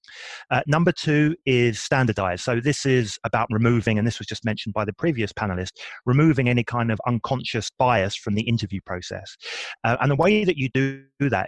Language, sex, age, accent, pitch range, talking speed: English, male, 30-49, British, 105-130 Hz, 195 wpm